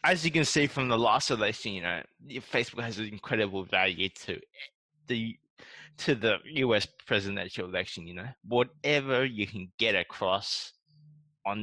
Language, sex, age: English, male, 20-39